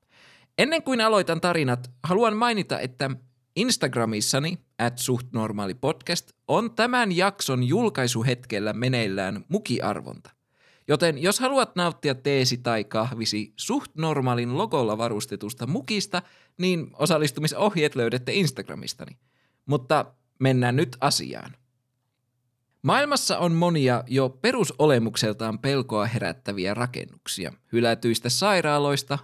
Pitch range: 120-170 Hz